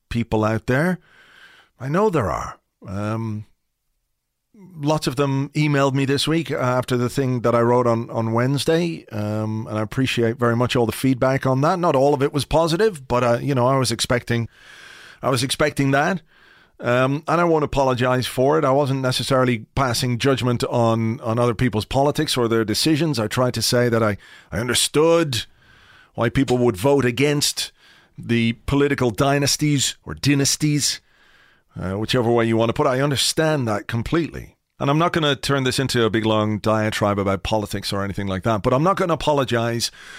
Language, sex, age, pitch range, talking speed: English, male, 40-59, 115-140 Hz, 190 wpm